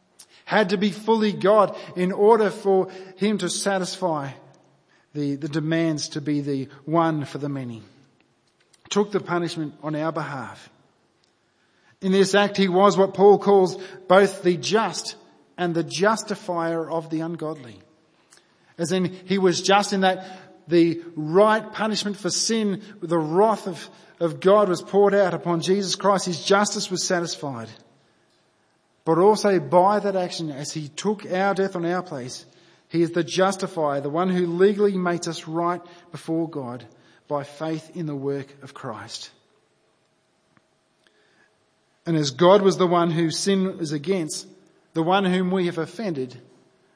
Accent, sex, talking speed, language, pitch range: Australian, male, 155 wpm, English, 155-195 Hz